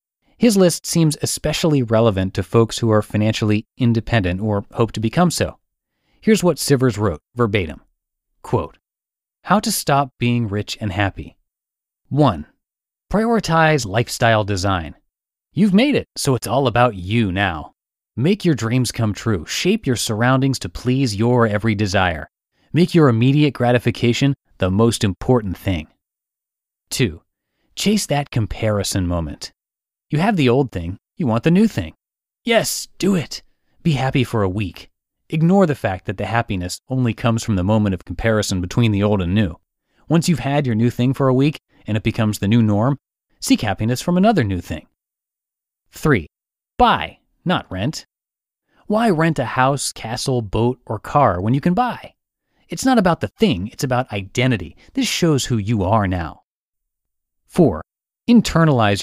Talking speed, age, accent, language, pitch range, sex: 160 wpm, 30-49, American, English, 105-145 Hz, male